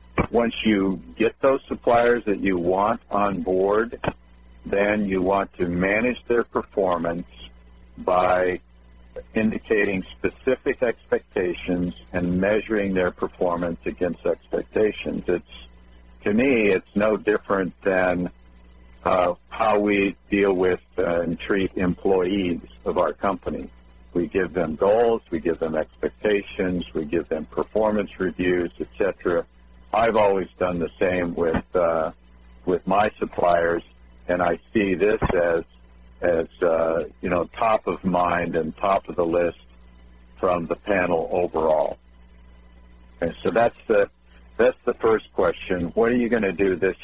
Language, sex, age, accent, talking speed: English, male, 60-79, American, 135 wpm